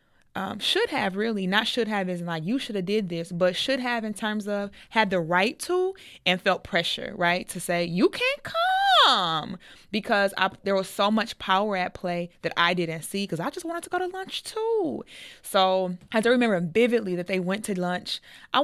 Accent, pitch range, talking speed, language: American, 175-225 Hz, 220 wpm, English